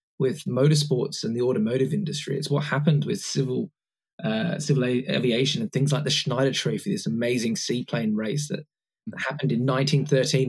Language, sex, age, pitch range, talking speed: English, male, 20-39, 135-170 Hz, 165 wpm